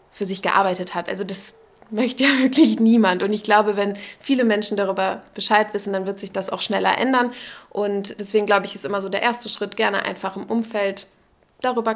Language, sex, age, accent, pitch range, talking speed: German, female, 20-39, German, 195-220 Hz, 205 wpm